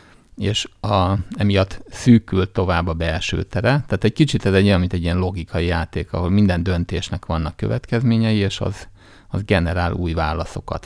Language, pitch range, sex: Hungarian, 85-100 Hz, male